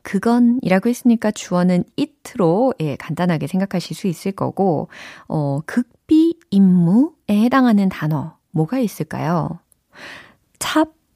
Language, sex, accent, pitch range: Korean, female, native, 160-245 Hz